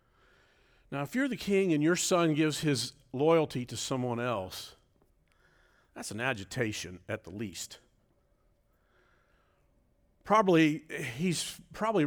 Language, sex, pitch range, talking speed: English, male, 140-220 Hz, 115 wpm